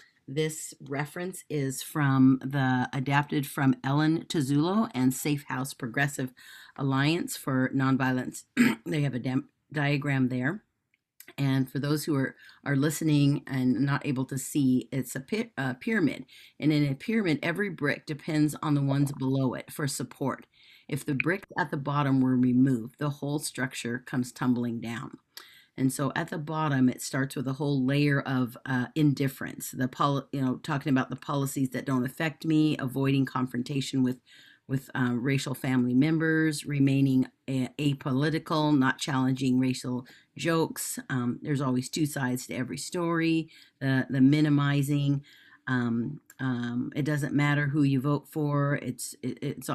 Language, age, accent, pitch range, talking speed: English, 40-59, American, 130-150 Hz, 155 wpm